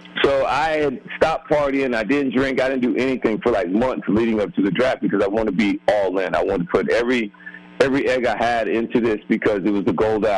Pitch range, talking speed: 105-140 Hz, 255 wpm